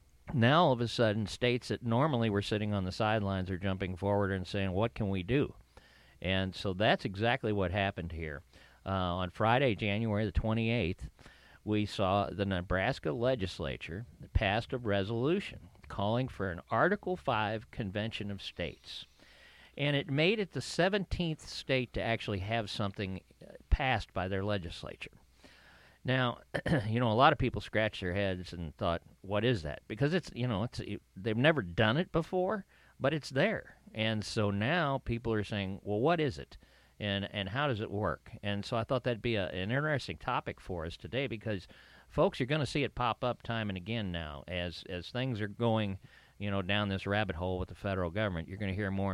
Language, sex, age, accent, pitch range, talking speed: English, male, 50-69, American, 95-125 Hz, 190 wpm